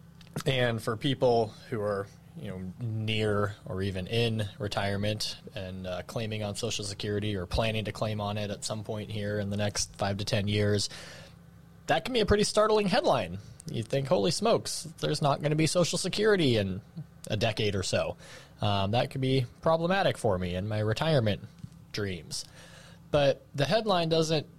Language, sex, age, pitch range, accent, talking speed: English, male, 20-39, 95-135 Hz, American, 180 wpm